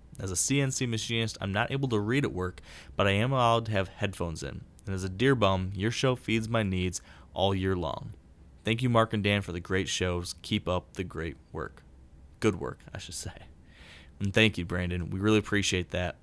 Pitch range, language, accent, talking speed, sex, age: 90-110 Hz, English, American, 220 wpm, male, 20-39